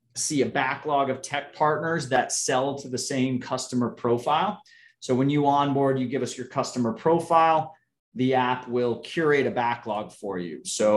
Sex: male